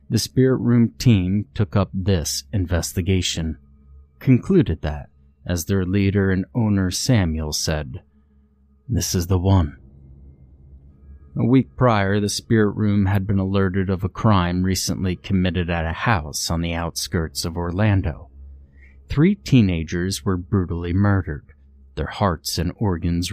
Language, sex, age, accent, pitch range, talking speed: English, male, 30-49, American, 75-100 Hz, 135 wpm